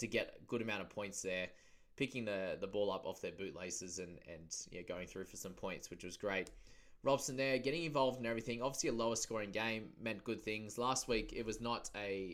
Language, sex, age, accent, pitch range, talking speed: English, male, 20-39, Australian, 100-120 Hz, 230 wpm